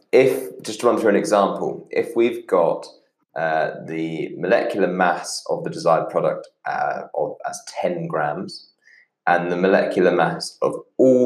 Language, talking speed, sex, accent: English, 155 wpm, male, British